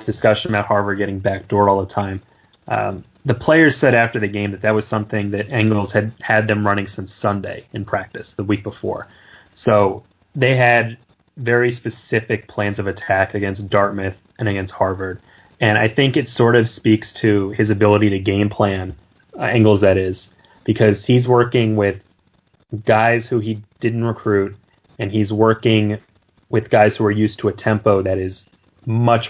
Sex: male